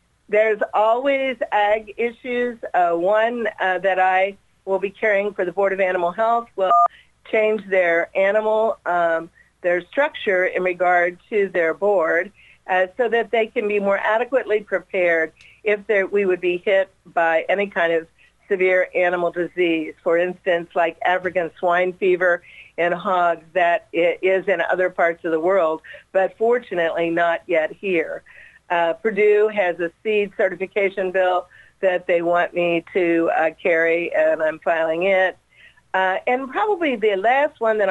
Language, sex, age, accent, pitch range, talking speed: English, female, 50-69, American, 175-215 Hz, 155 wpm